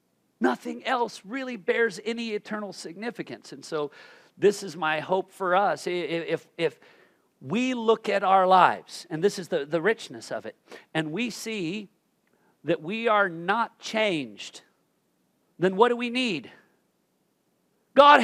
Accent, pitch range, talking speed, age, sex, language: American, 185-275 Hz, 145 wpm, 50-69, male, English